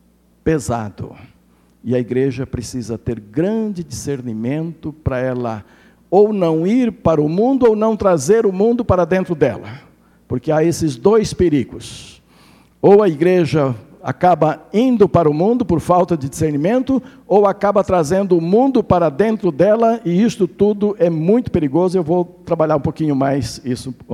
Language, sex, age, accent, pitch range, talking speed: Portuguese, male, 60-79, Brazilian, 125-180 Hz, 155 wpm